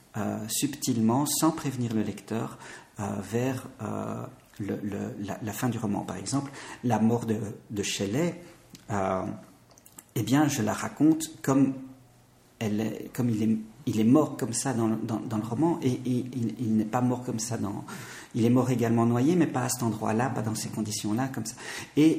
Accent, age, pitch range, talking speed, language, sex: French, 50-69, 110-135 Hz, 200 wpm, French, male